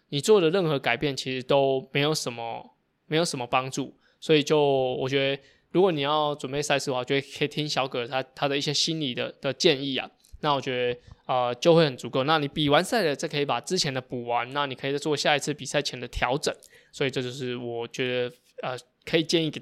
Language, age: Chinese, 20-39